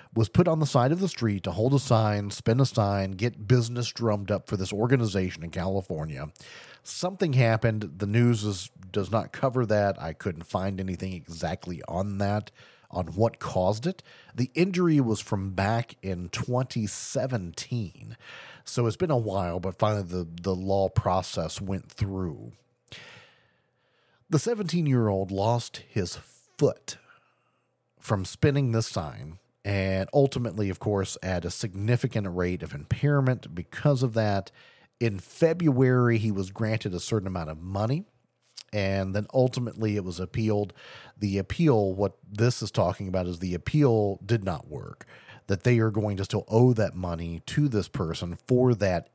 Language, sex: English, male